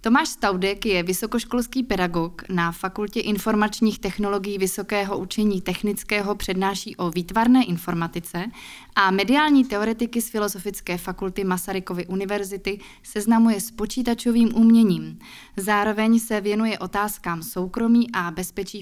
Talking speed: 110 wpm